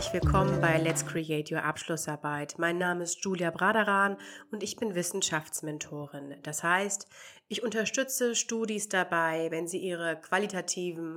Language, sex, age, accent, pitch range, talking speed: German, female, 30-49, German, 165-195 Hz, 135 wpm